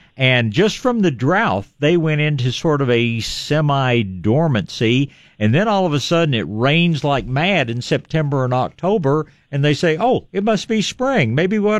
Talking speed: 195 wpm